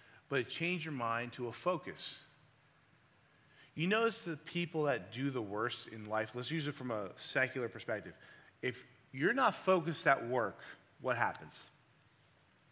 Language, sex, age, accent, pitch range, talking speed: English, male, 30-49, American, 115-150 Hz, 150 wpm